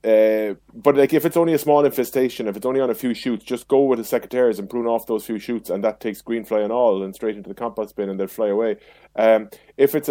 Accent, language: Irish, English